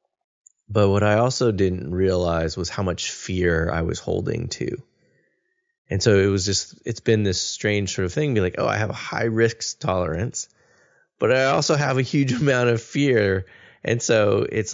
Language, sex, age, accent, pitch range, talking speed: English, male, 20-39, American, 85-110 Hz, 185 wpm